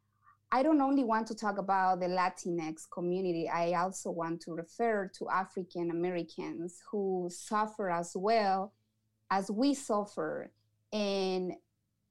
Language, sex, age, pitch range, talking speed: English, female, 30-49, 175-220 Hz, 130 wpm